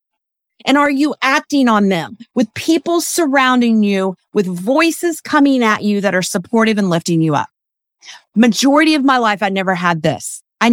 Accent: American